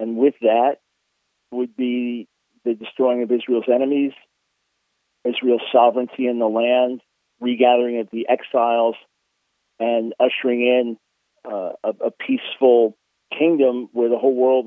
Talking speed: 125 wpm